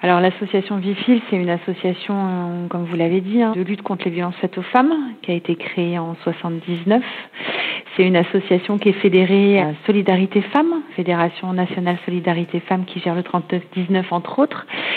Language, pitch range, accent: French, 170-200 Hz, French